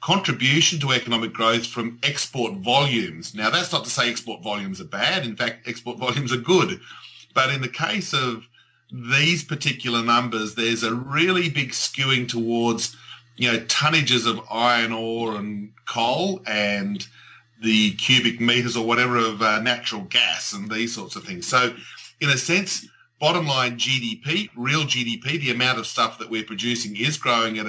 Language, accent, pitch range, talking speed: English, Australian, 115-140 Hz, 170 wpm